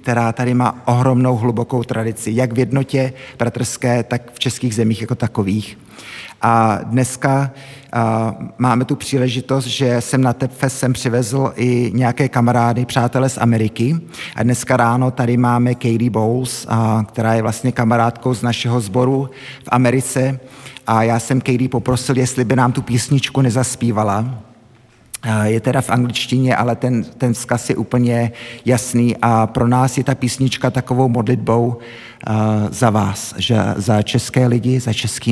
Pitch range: 105-125 Hz